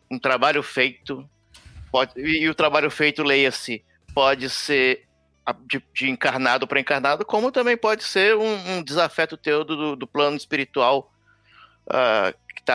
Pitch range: 135-175 Hz